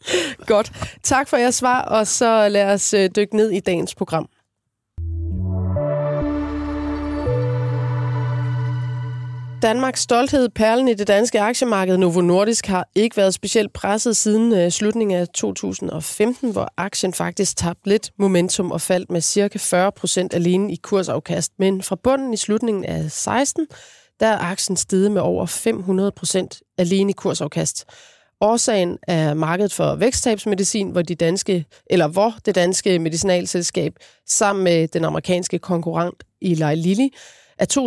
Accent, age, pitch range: native, 30-49, 170-215 Hz